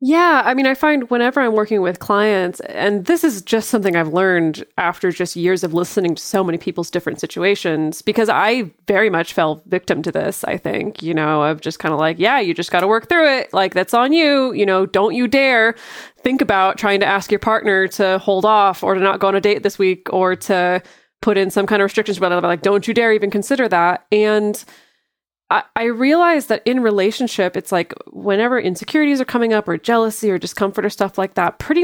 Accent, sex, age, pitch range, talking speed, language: American, female, 20-39, 180-220 Hz, 225 wpm, English